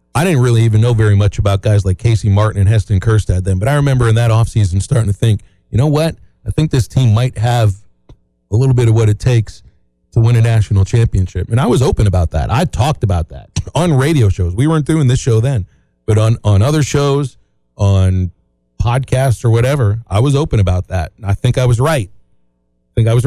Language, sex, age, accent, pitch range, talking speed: English, male, 40-59, American, 95-125 Hz, 230 wpm